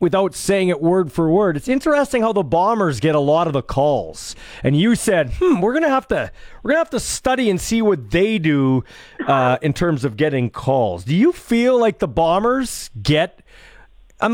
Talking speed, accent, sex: 205 wpm, American, male